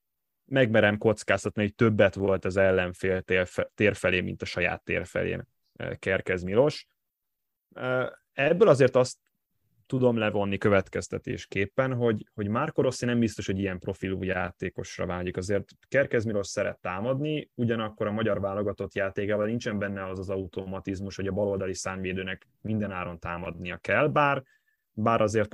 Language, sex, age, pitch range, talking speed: Hungarian, male, 20-39, 95-115 Hz, 135 wpm